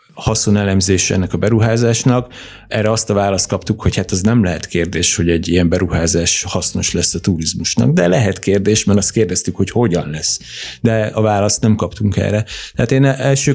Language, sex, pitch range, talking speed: Hungarian, male, 95-115 Hz, 180 wpm